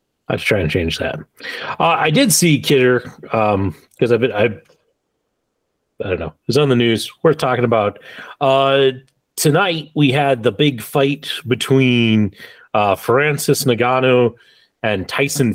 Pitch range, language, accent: 115-140 Hz, English, American